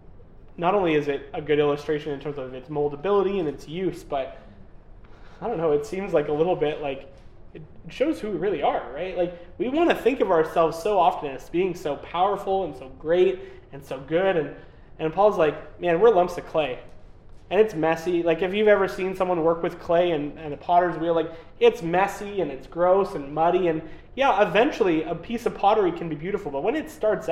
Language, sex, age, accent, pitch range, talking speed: English, male, 20-39, American, 155-205 Hz, 220 wpm